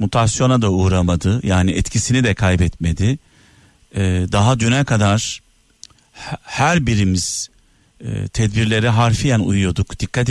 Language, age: Turkish, 50-69